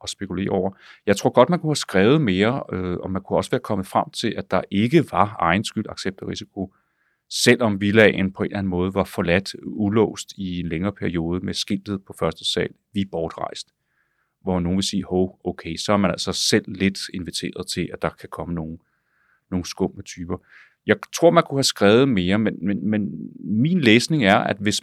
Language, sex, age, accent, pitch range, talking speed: Danish, male, 30-49, native, 95-120 Hz, 210 wpm